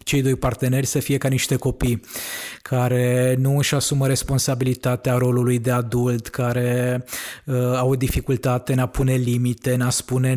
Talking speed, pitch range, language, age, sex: 155 wpm, 125-140 Hz, Romanian, 20-39, male